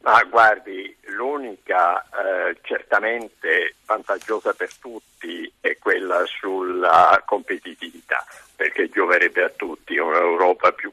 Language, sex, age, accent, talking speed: Italian, male, 50-69, native, 105 wpm